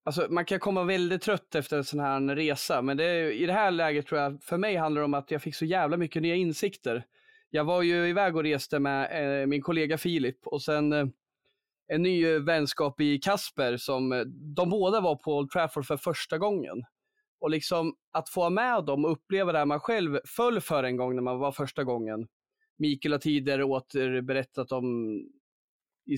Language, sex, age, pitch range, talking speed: Swedish, male, 20-39, 140-180 Hz, 205 wpm